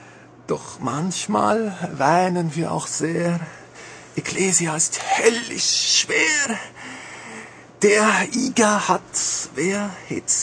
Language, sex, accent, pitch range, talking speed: German, male, German, 160-240 Hz, 85 wpm